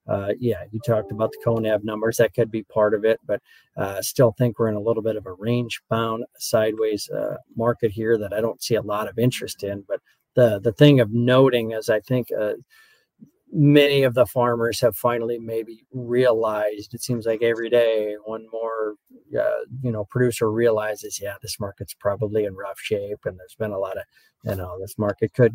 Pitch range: 110-125 Hz